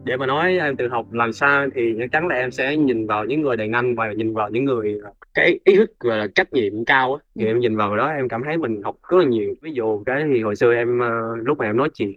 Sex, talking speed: male, 280 wpm